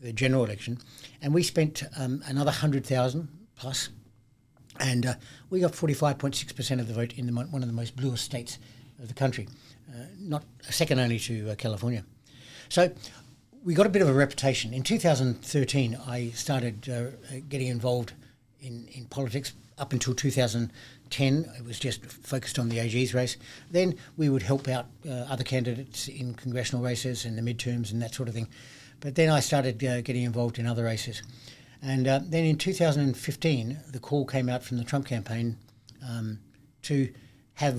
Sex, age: male, 60-79